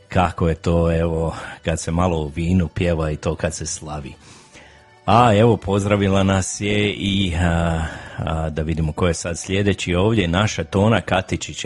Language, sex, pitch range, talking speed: Croatian, male, 85-100 Hz, 170 wpm